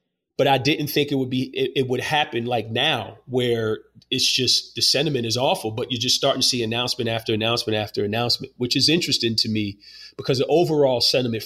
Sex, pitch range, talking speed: male, 110-130 Hz, 210 wpm